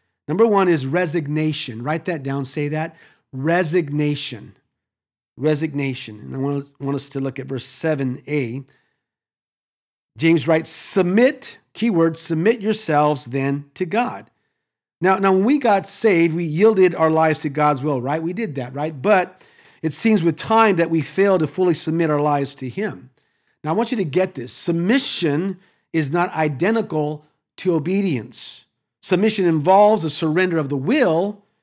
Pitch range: 150-190 Hz